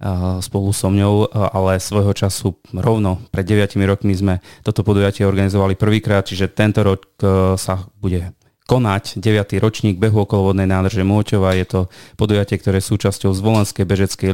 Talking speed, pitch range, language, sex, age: 145 wpm, 90-105 Hz, Slovak, male, 30-49